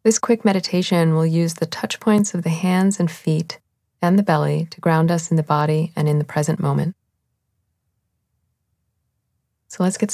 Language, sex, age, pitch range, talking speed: English, female, 30-49, 105-170 Hz, 180 wpm